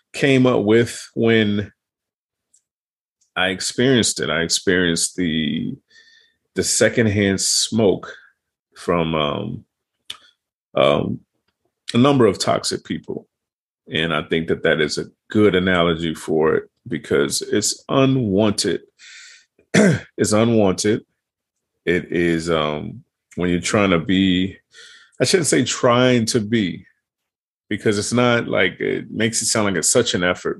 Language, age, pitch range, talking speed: English, 30-49, 85-115 Hz, 125 wpm